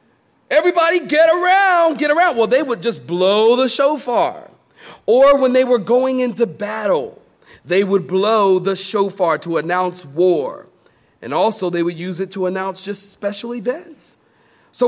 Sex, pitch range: male, 180-245 Hz